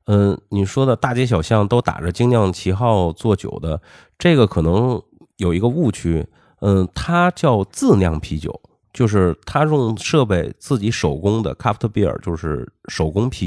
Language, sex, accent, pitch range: Chinese, male, native, 85-115 Hz